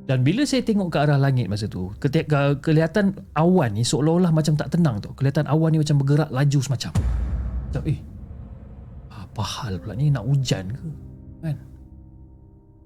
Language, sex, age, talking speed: Malay, male, 30-49, 165 wpm